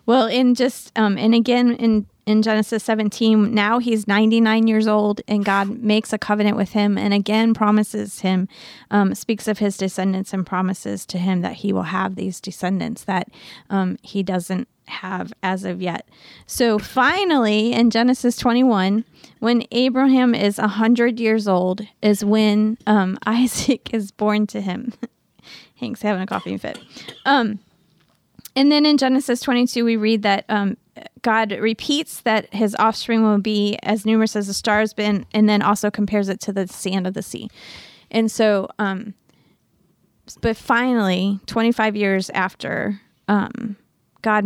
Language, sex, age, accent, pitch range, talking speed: English, female, 20-39, American, 195-225 Hz, 160 wpm